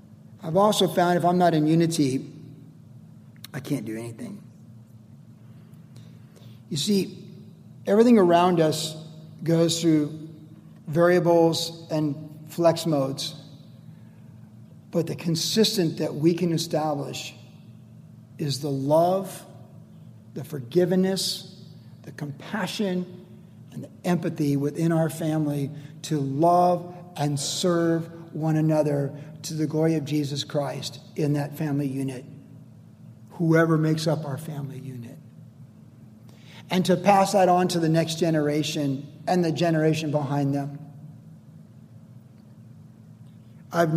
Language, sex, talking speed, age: English, male, 110 wpm, 50-69